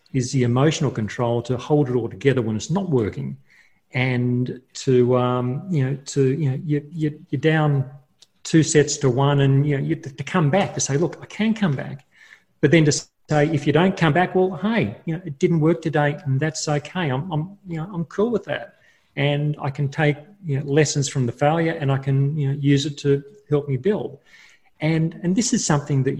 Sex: male